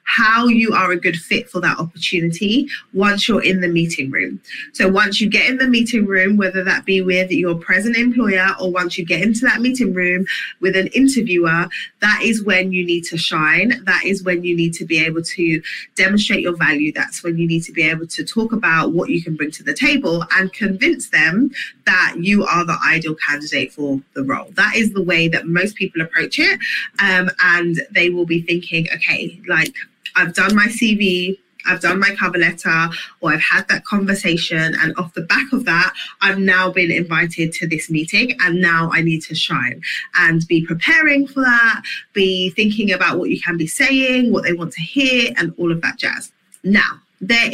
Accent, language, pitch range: British, English, 170-230 Hz